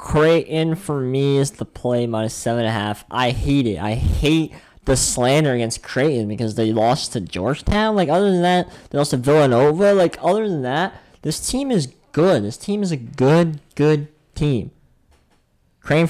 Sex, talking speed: male, 185 wpm